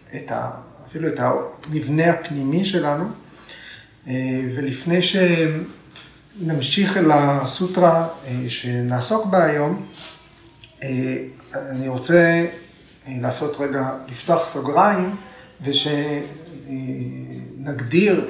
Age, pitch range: 40-59, 125-160 Hz